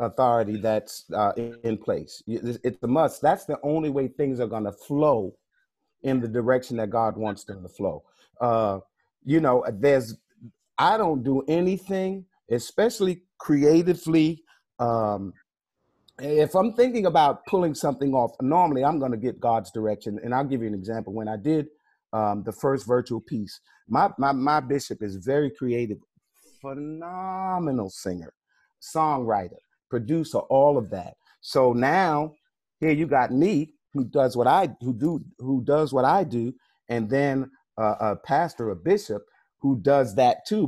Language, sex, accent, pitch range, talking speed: English, male, American, 115-150 Hz, 160 wpm